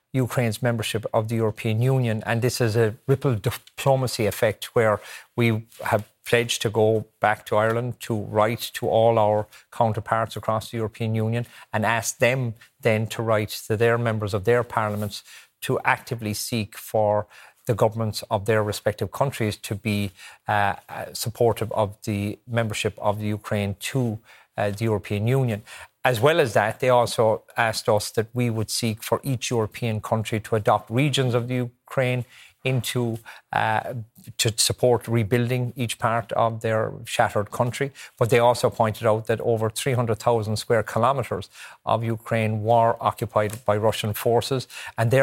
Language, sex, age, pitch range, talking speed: English, male, 40-59, 110-120 Hz, 165 wpm